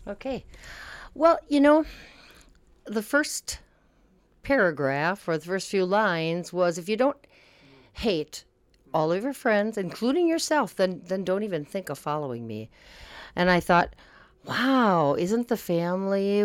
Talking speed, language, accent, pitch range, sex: 140 wpm, English, American, 155-225 Hz, female